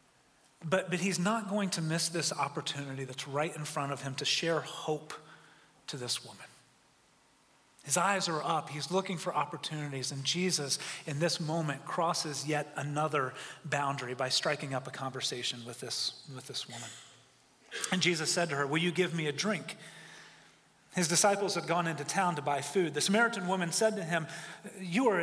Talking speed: 180 wpm